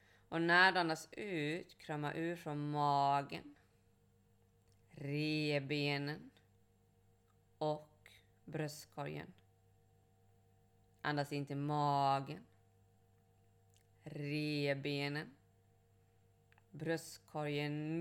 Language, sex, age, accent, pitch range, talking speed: Swedish, female, 20-39, native, 100-150 Hz, 55 wpm